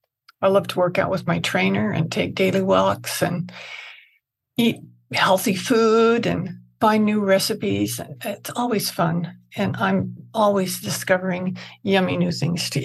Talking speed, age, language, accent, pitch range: 145 wpm, 60-79, English, American, 130-210 Hz